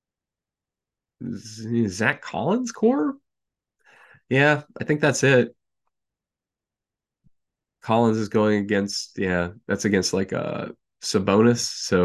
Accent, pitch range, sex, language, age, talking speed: American, 100-135 Hz, male, English, 20-39, 95 wpm